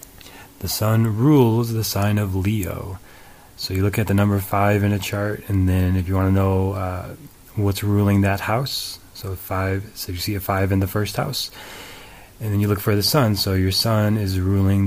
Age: 30-49